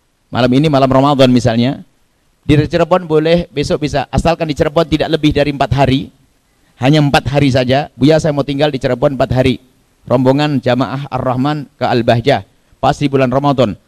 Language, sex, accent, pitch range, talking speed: Indonesian, male, native, 135-225 Hz, 165 wpm